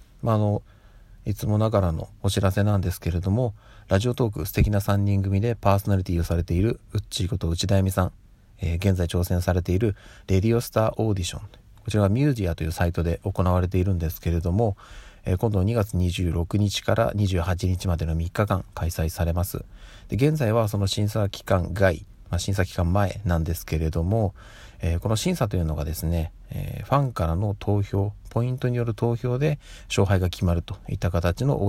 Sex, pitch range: male, 90-115 Hz